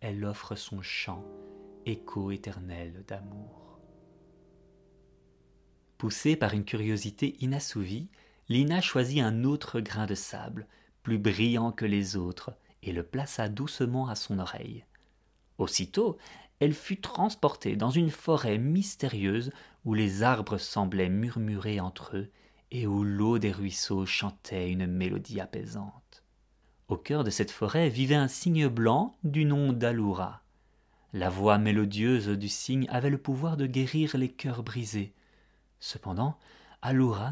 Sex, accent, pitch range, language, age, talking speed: male, French, 100-135 Hz, French, 30-49, 130 wpm